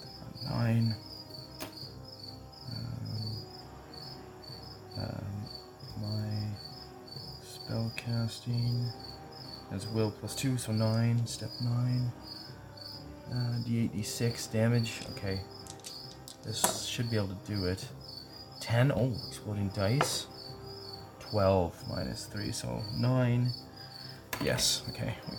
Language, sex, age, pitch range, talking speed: English, male, 20-39, 95-120 Hz, 90 wpm